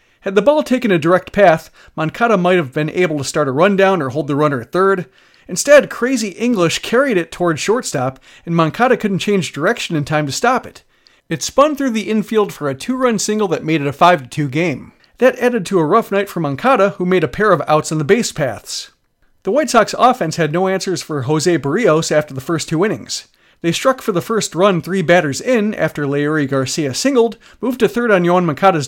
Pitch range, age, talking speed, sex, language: 155-220 Hz, 40-59, 220 wpm, male, English